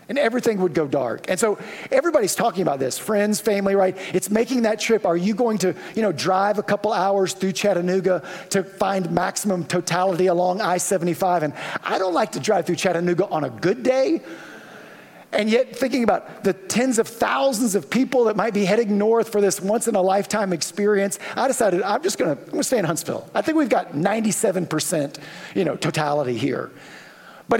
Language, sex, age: English, male, 40-59